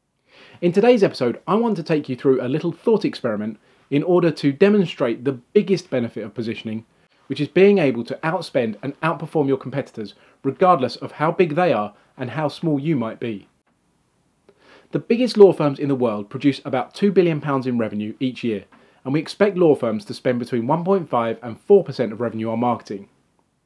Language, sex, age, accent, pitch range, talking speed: English, male, 30-49, British, 120-170 Hz, 190 wpm